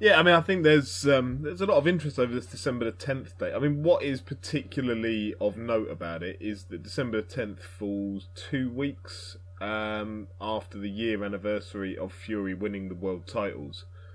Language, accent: English, British